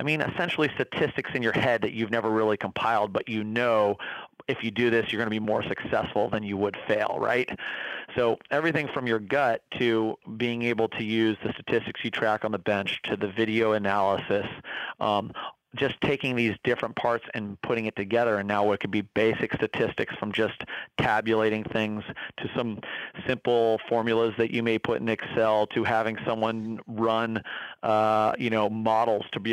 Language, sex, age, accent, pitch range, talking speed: English, male, 30-49, American, 105-115 Hz, 185 wpm